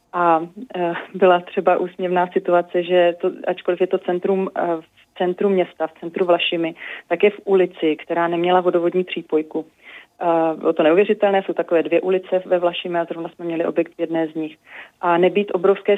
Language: Czech